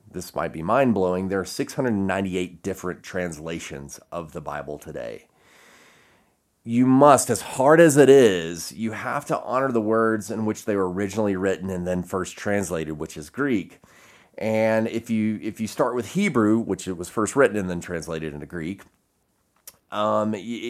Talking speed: 170 wpm